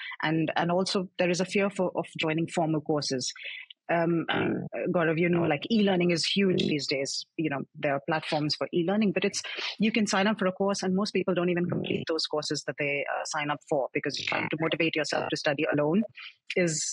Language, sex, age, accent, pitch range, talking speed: English, female, 30-49, Indian, 155-190 Hz, 225 wpm